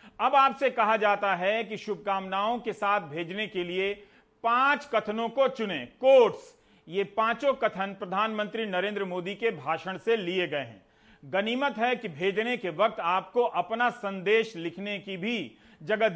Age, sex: 40-59, male